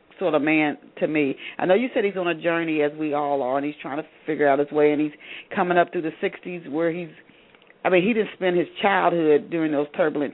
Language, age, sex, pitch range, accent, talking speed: English, 40-59, female, 165-210 Hz, American, 255 wpm